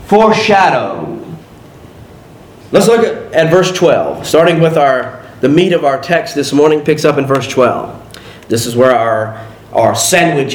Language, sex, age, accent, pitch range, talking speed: English, male, 40-59, American, 150-240 Hz, 160 wpm